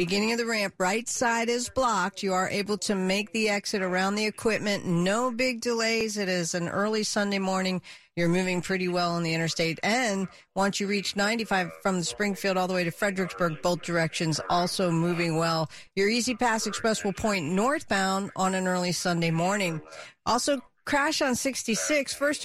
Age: 50-69